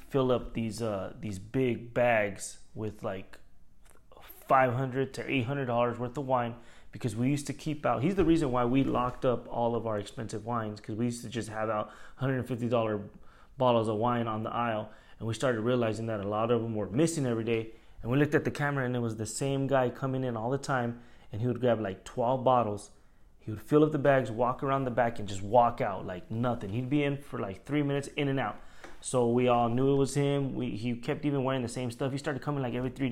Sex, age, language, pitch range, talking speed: male, 20-39, English, 115-130 Hz, 240 wpm